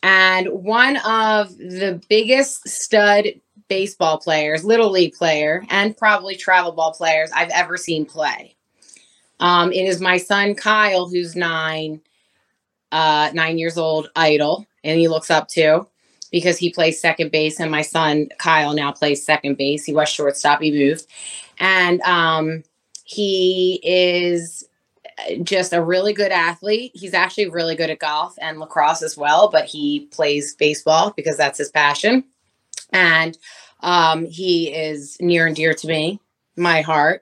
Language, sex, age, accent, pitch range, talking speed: English, female, 20-39, American, 160-200 Hz, 150 wpm